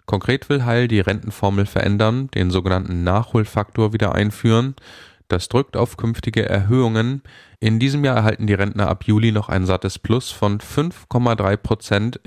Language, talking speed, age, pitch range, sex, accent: German, 145 wpm, 10-29, 95-120 Hz, male, German